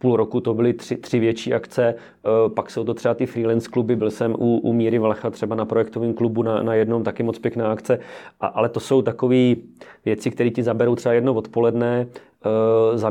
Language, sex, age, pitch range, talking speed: Czech, male, 30-49, 110-125 Hz, 200 wpm